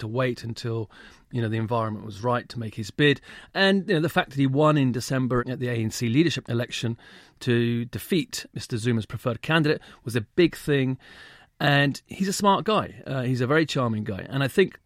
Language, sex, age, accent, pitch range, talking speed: English, male, 40-59, British, 110-130 Hz, 210 wpm